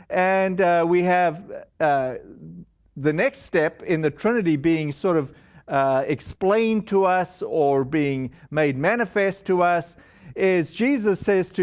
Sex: male